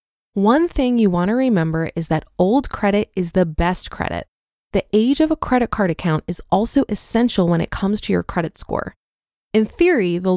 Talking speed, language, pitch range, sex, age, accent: 190 wpm, English, 180-245 Hz, female, 20-39, American